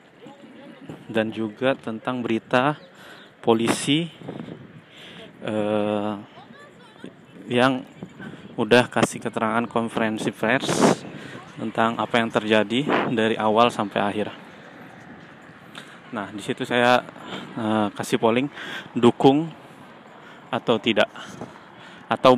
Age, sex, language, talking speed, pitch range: 20-39, male, Indonesian, 85 wpm, 110-130 Hz